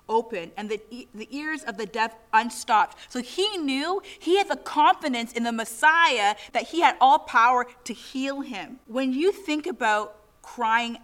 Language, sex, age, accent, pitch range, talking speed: English, female, 30-49, American, 215-280 Hz, 175 wpm